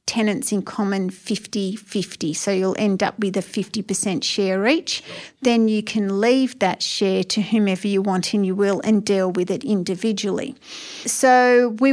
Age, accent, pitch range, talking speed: 40-59, Australian, 200-235 Hz, 165 wpm